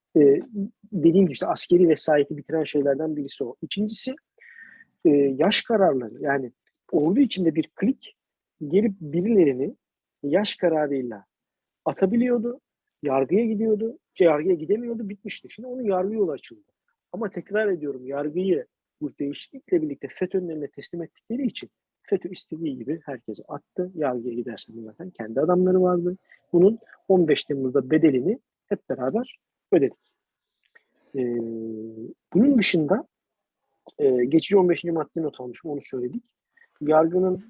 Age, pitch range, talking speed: 50-69, 140-195 Hz, 115 wpm